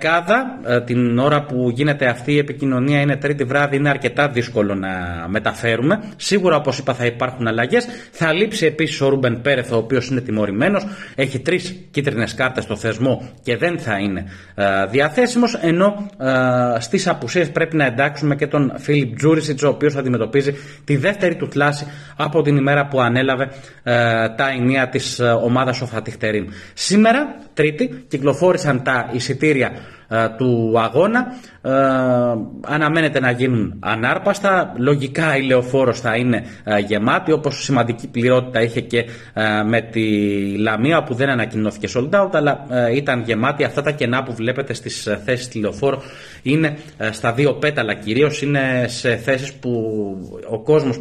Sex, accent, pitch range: male, native, 115-145 Hz